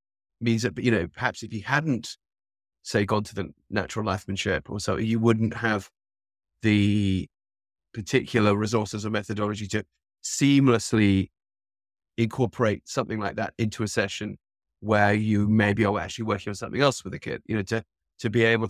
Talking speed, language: 165 wpm, English